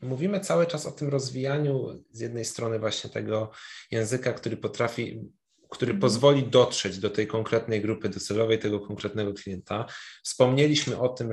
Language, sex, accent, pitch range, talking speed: Polish, male, native, 105-130 Hz, 150 wpm